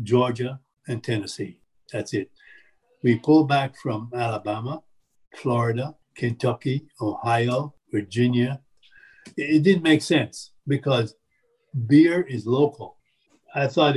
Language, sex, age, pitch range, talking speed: English, male, 60-79, 120-155 Hz, 105 wpm